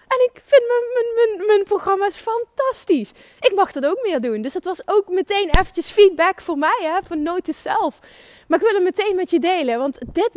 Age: 30-49